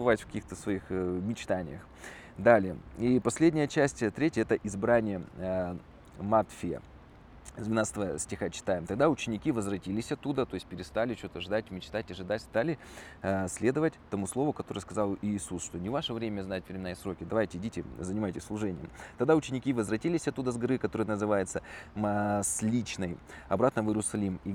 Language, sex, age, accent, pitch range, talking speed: Russian, male, 20-39, native, 90-110 Hz, 140 wpm